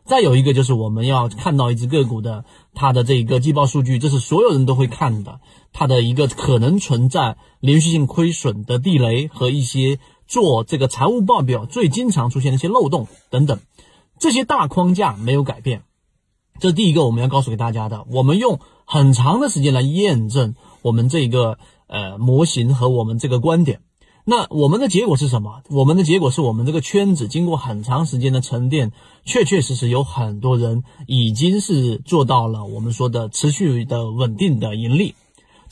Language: Chinese